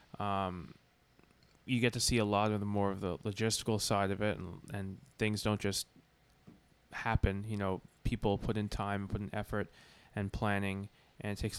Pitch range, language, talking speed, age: 100-115 Hz, English, 180 wpm, 20-39